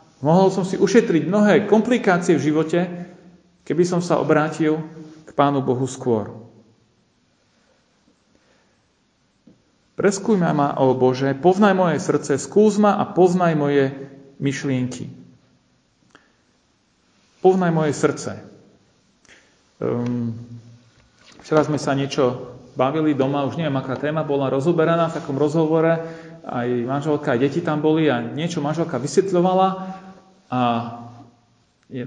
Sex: male